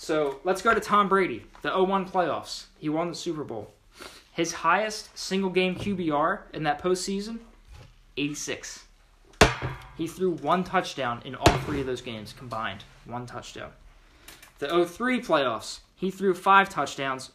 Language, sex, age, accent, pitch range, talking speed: English, male, 20-39, American, 145-185 Hz, 145 wpm